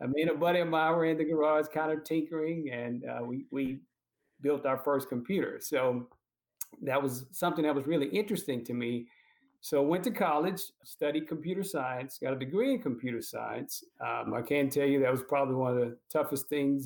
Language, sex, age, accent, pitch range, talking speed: English, male, 50-69, American, 130-160 Hz, 205 wpm